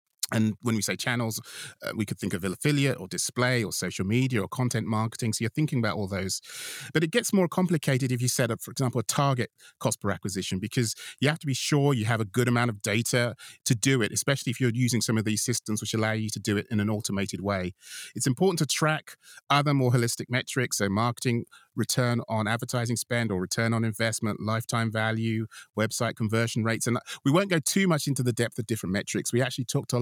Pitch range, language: 110-140 Hz, English